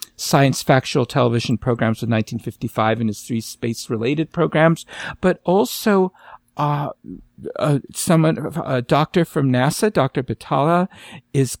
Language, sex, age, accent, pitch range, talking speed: English, male, 50-69, American, 125-165 Hz, 125 wpm